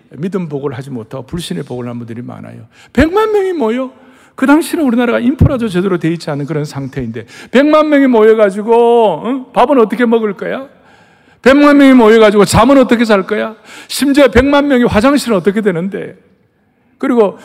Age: 60-79